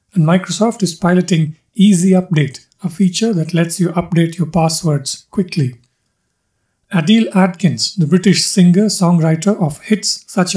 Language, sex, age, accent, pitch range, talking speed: English, male, 50-69, Indian, 160-190 Hz, 130 wpm